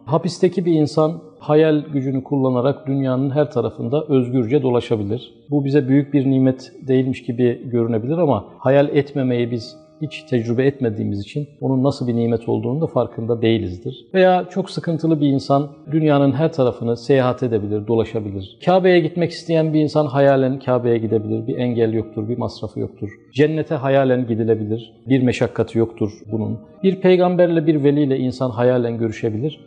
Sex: male